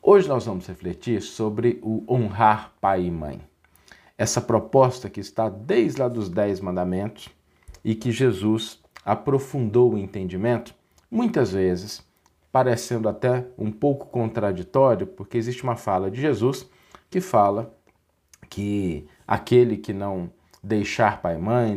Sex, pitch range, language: male, 95-120 Hz, Portuguese